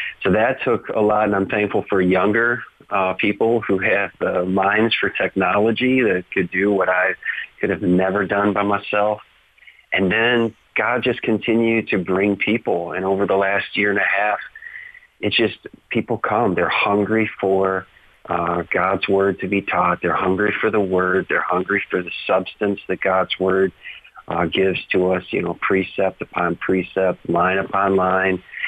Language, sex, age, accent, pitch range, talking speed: English, male, 40-59, American, 90-100 Hz, 175 wpm